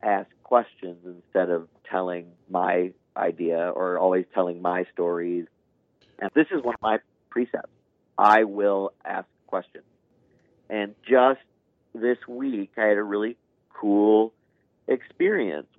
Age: 40-59